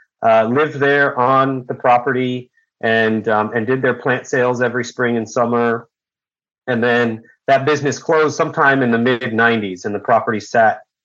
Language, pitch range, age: English, 110-130 Hz, 30-49